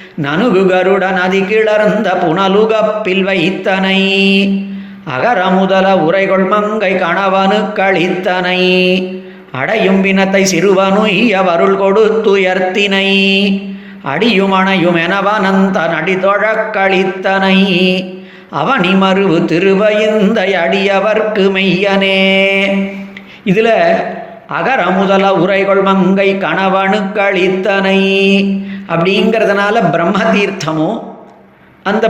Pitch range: 190-215 Hz